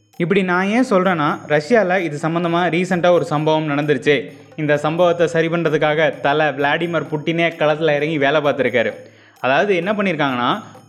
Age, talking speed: 20-39, 140 wpm